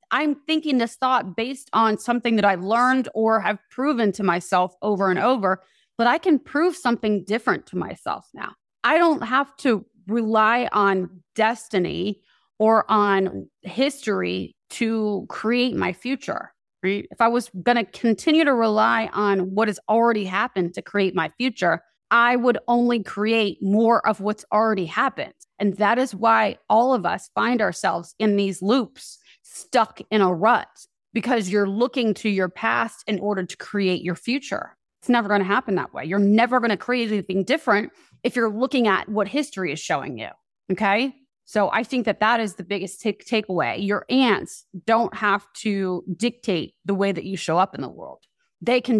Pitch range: 195-240 Hz